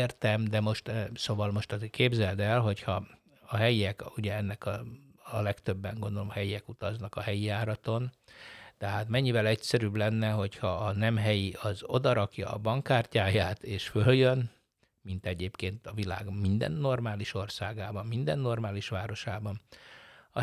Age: 60-79